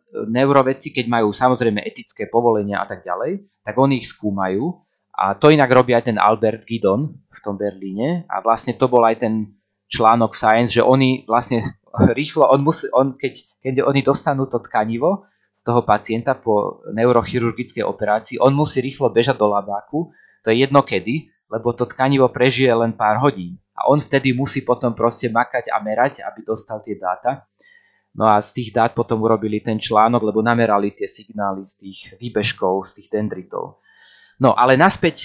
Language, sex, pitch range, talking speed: Slovak, male, 110-135 Hz, 175 wpm